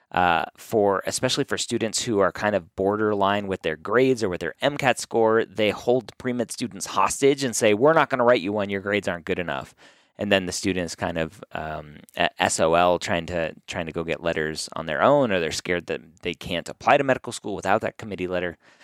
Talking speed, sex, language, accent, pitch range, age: 225 wpm, male, English, American, 90-120 Hz, 30-49